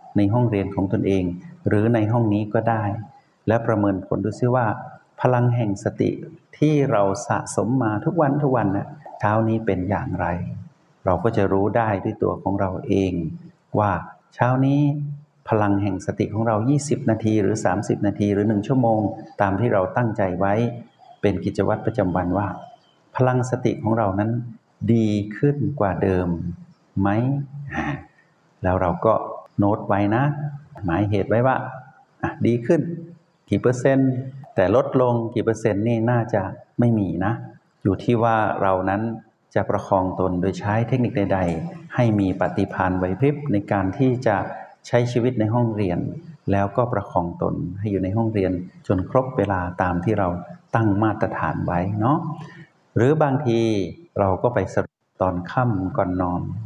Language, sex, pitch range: Thai, male, 100-125 Hz